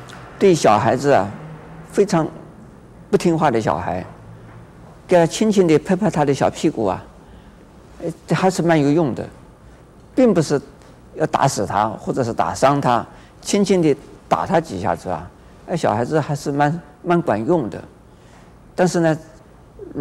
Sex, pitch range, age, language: male, 110-155 Hz, 50-69, Chinese